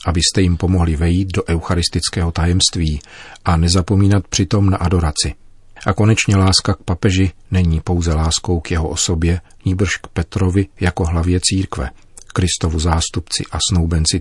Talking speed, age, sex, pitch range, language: 140 wpm, 40-59, male, 85-95 Hz, Czech